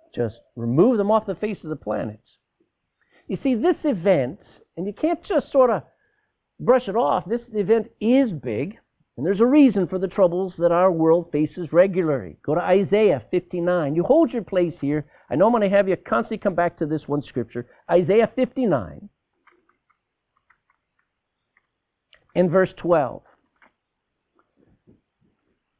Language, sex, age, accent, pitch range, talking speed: English, male, 50-69, American, 150-225 Hz, 150 wpm